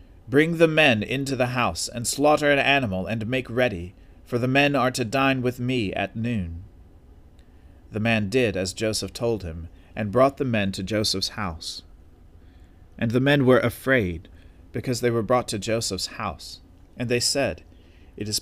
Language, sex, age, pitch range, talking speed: English, male, 40-59, 90-130 Hz, 175 wpm